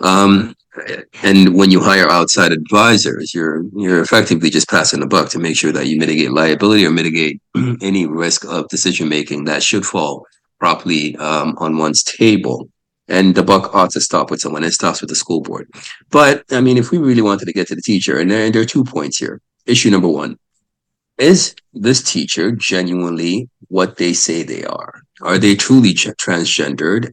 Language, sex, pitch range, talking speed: English, male, 85-110 Hz, 190 wpm